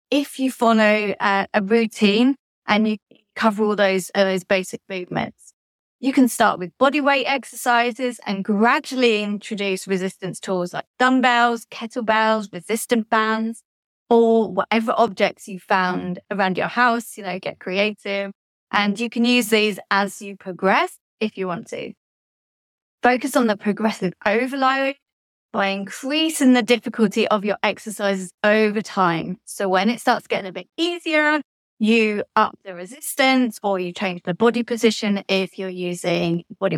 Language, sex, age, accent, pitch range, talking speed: English, female, 20-39, British, 195-245 Hz, 150 wpm